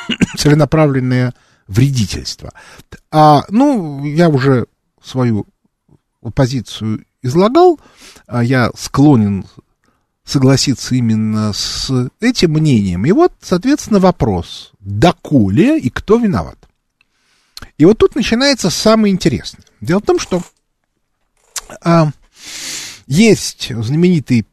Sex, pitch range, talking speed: male, 125-185 Hz, 85 wpm